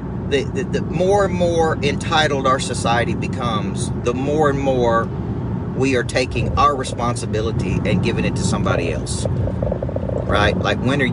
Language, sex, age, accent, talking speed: English, male, 40-59, American, 155 wpm